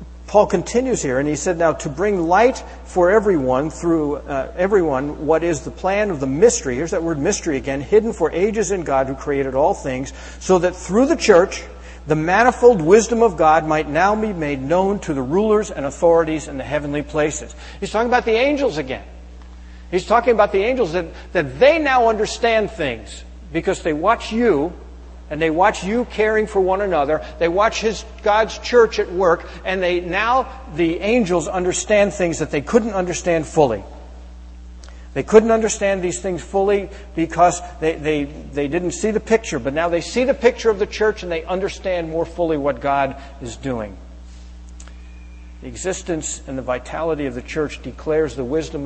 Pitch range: 130-200 Hz